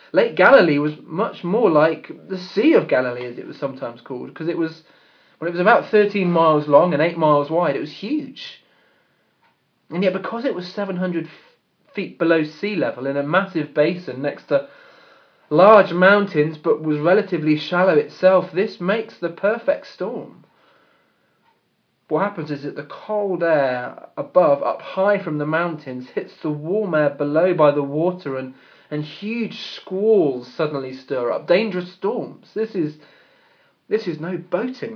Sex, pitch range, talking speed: male, 150-200 Hz, 165 wpm